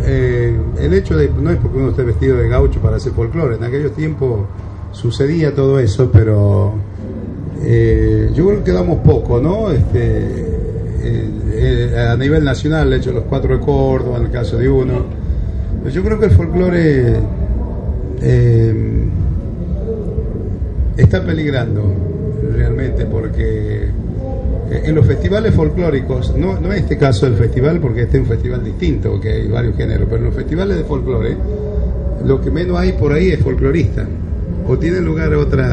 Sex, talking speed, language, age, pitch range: male, 165 wpm, Spanish, 70-89, 95-130 Hz